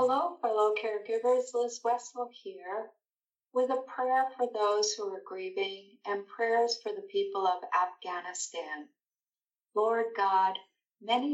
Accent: American